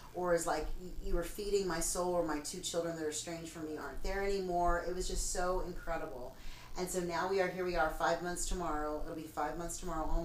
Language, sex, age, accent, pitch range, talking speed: English, female, 30-49, American, 150-175 Hz, 245 wpm